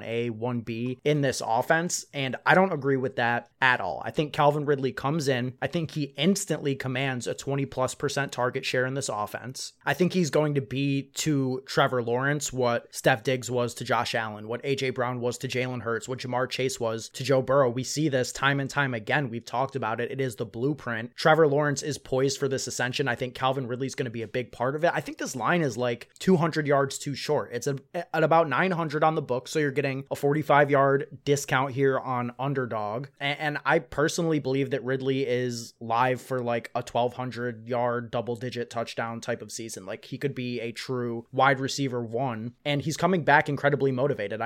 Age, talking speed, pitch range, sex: 20-39, 210 wpm, 120-140 Hz, male